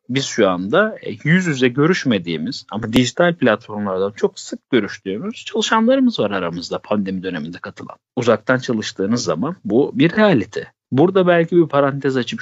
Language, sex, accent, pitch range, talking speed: Turkish, male, native, 110-170 Hz, 140 wpm